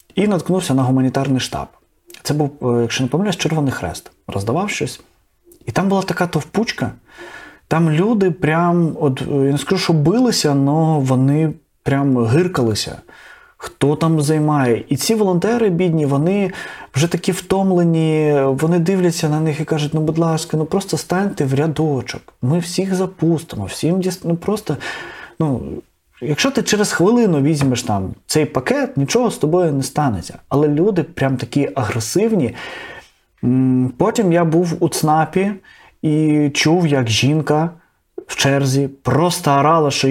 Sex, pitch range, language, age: male, 130-175 Hz, Ukrainian, 30-49